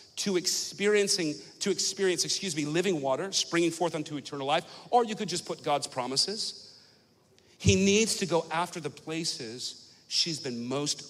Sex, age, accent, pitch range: male, 40-59, American, 150-220 Hz